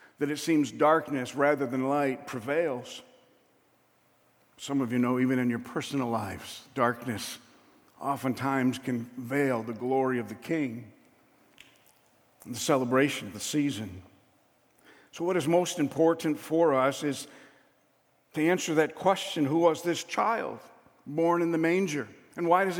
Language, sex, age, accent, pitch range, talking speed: English, male, 50-69, American, 135-165 Hz, 145 wpm